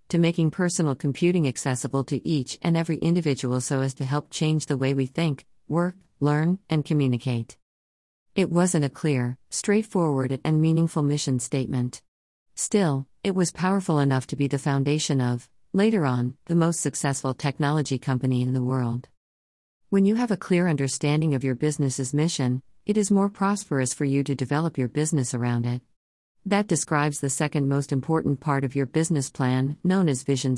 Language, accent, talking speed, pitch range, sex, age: English, American, 175 wpm, 130-165 Hz, female, 50-69